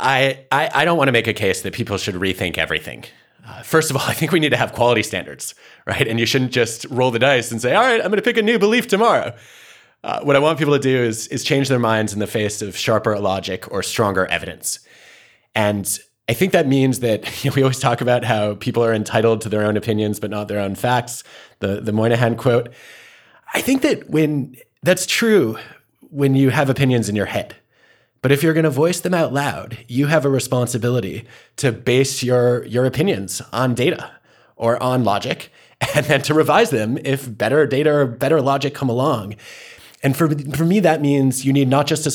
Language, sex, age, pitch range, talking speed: English, male, 30-49, 110-140 Hz, 220 wpm